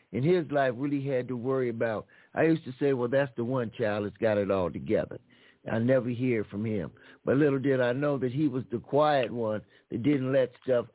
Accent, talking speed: American, 230 wpm